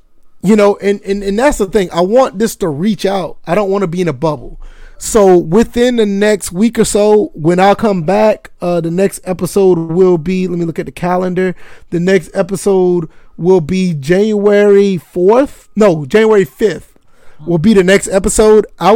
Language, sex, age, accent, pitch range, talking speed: English, male, 20-39, American, 180-210 Hz, 195 wpm